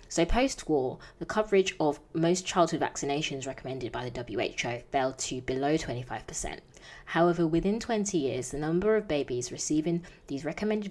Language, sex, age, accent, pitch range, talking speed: English, female, 20-39, British, 140-175 Hz, 155 wpm